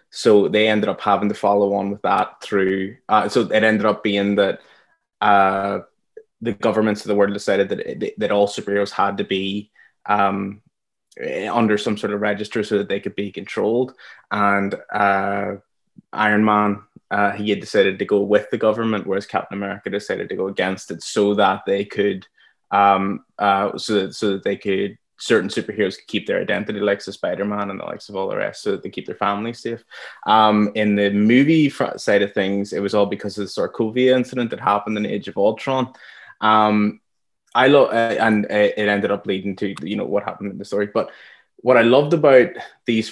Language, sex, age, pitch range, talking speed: English, male, 20-39, 100-110 Hz, 205 wpm